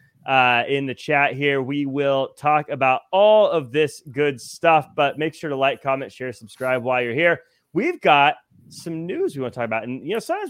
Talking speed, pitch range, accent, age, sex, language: 215 wpm, 135-165 Hz, American, 30-49, male, English